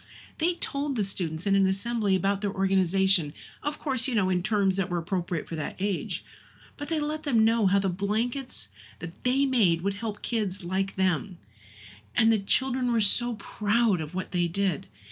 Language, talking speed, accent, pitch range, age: English, 190 wpm, American, 165-220 Hz, 50-69